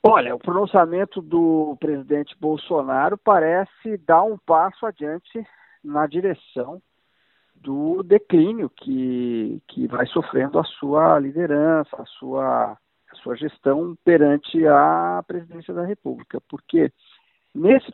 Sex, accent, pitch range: male, Brazilian, 130-175 Hz